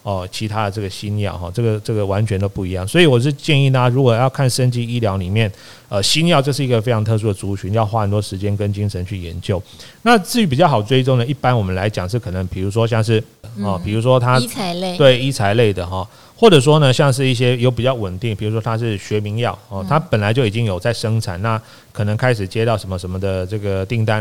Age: 30-49